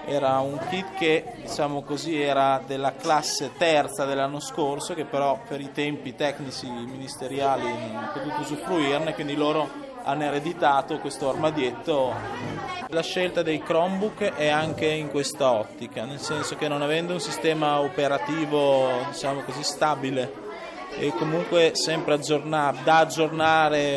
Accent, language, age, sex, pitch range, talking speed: native, Italian, 20-39, male, 135-160 Hz, 135 wpm